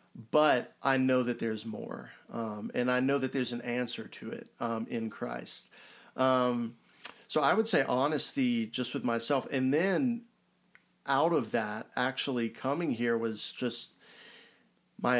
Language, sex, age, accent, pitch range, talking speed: English, male, 40-59, American, 115-135 Hz, 155 wpm